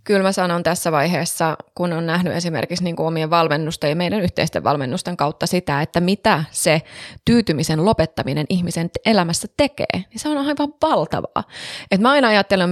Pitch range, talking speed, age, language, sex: 160-210 Hz, 165 wpm, 20-39, Finnish, female